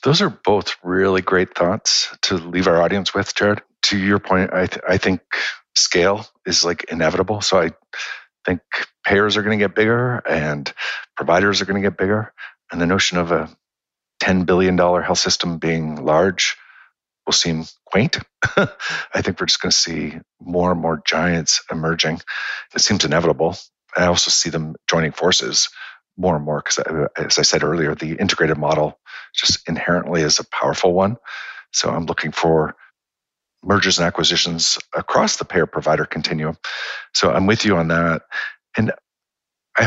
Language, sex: English, male